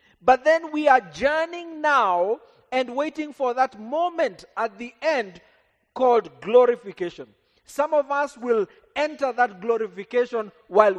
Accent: South African